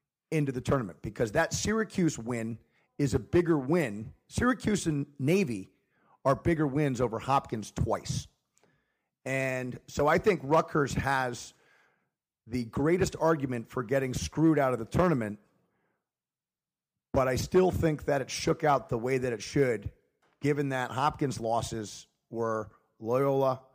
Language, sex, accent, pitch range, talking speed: English, male, American, 115-145 Hz, 140 wpm